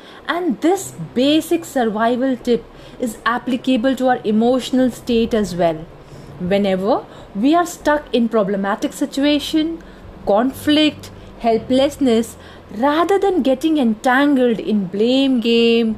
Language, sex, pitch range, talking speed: English, female, 210-285 Hz, 110 wpm